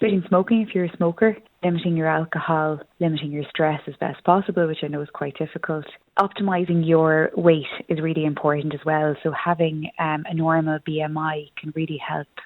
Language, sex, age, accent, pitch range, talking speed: English, female, 20-39, Irish, 155-170 Hz, 185 wpm